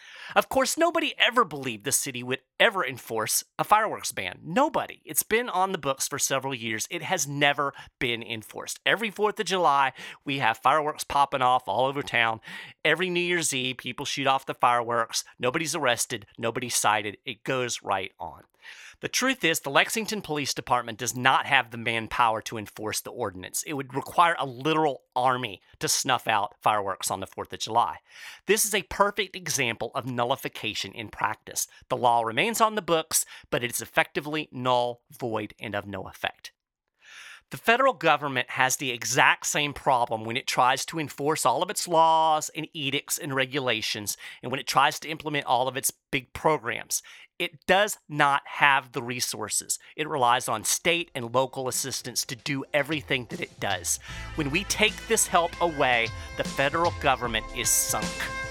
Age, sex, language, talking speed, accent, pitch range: 40-59, male, English, 180 wpm, American, 120-170 Hz